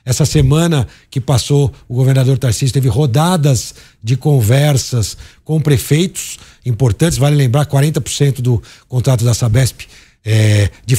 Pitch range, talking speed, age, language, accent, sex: 120-150 Hz, 120 wpm, 60-79, Portuguese, Brazilian, male